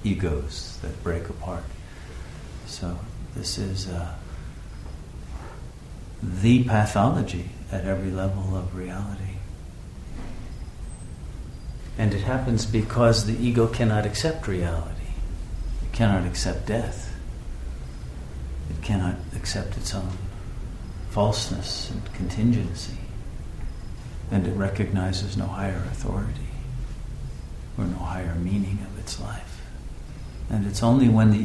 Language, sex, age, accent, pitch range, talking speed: English, male, 50-69, American, 90-110 Hz, 105 wpm